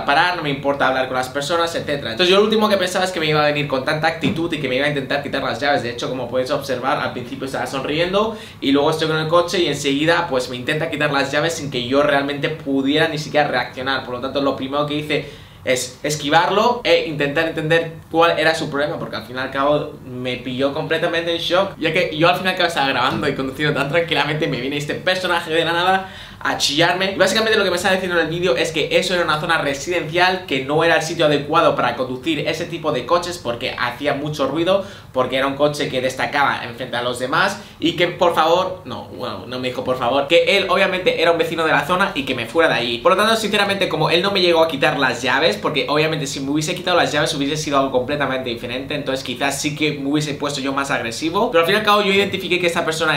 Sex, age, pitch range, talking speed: male, 20-39, 135-170 Hz, 255 wpm